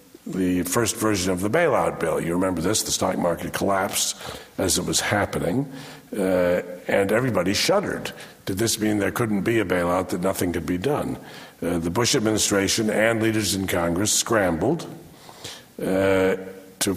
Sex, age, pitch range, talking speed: male, 50-69, 95-125 Hz, 165 wpm